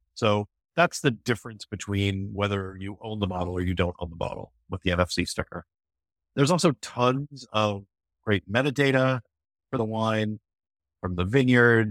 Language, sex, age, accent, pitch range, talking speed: English, male, 50-69, American, 95-120 Hz, 160 wpm